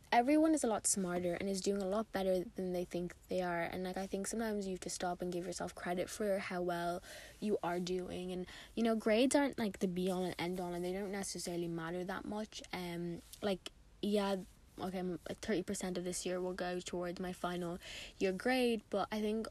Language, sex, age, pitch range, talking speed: English, female, 10-29, 180-215 Hz, 225 wpm